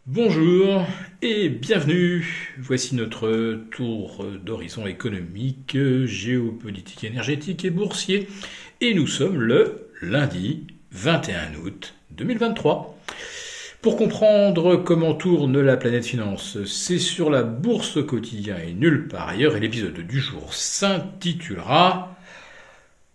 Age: 50-69